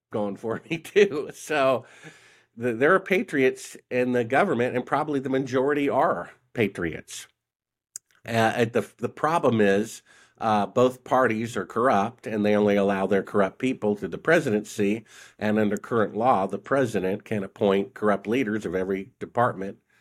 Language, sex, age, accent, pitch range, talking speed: English, male, 50-69, American, 100-120 Hz, 155 wpm